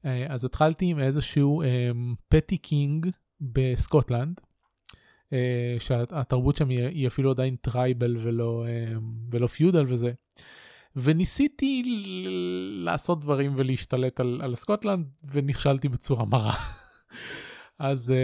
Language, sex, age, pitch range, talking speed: Hebrew, male, 20-39, 125-145 Hz, 90 wpm